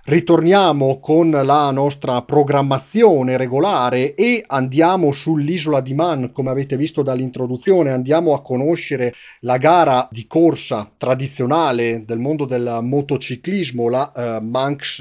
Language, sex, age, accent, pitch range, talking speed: Italian, male, 40-59, native, 125-155 Hz, 120 wpm